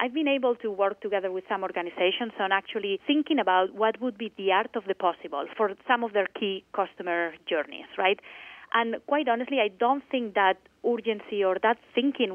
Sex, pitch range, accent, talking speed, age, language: female, 185-235 Hz, Spanish, 195 wpm, 30-49, English